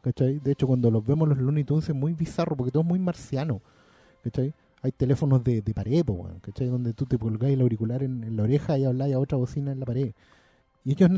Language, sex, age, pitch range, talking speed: Spanish, male, 30-49, 130-180 Hz, 230 wpm